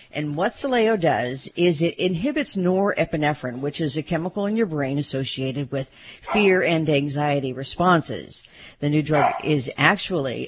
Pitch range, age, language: 145-190 Hz, 50-69, English